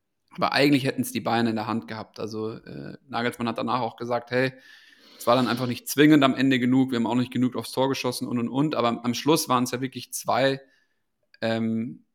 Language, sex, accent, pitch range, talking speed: German, male, German, 115-125 Hz, 230 wpm